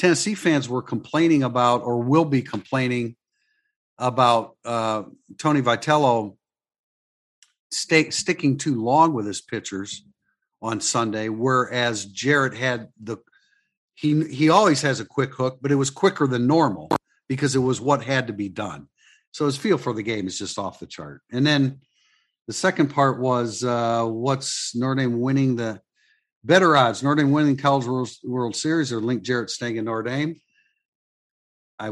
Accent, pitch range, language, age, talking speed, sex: American, 110-140 Hz, English, 50-69, 165 wpm, male